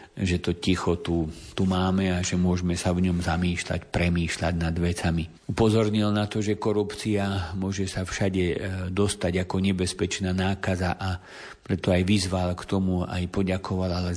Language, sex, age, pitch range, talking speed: Slovak, male, 50-69, 90-95 Hz, 160 wpm